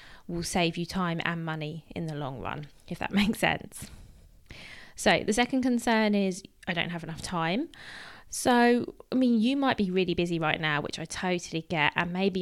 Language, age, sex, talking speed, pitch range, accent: English, 20-39, female, 195 wpm, 165-200 Hz, British